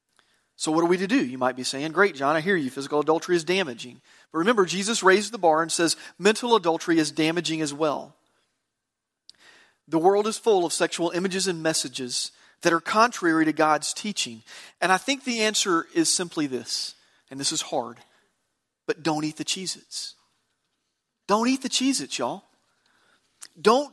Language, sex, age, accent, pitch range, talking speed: English, male, 40-59, American, 150-195 Hz, 180 wpm